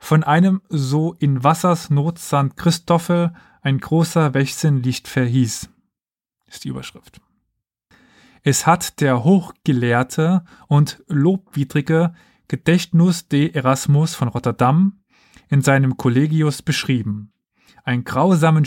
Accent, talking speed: German, 105 wpm